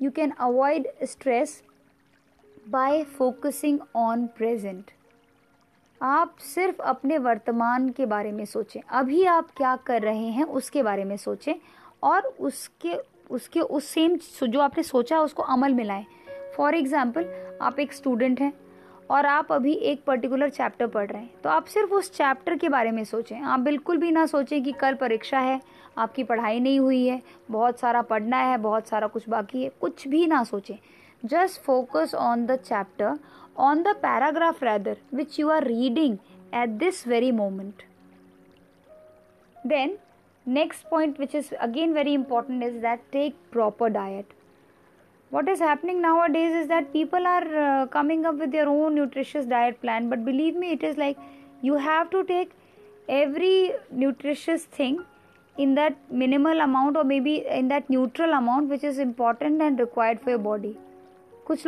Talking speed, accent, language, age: 165 wpm, native, Hindi, 20-39